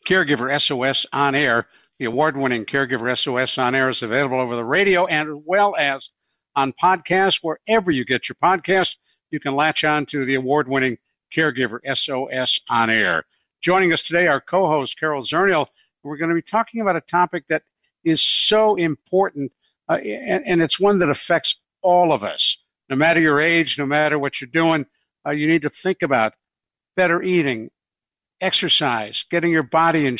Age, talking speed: 60-79, 175 wpm